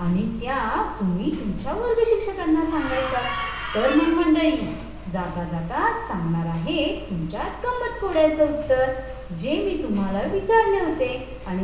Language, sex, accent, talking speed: Marathi, female, native, 80 wpm